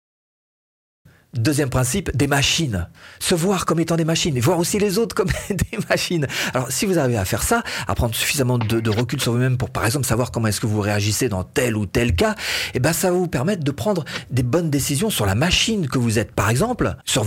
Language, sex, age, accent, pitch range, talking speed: French, male, 40-59, French, 115-170 Hz, 235 wpm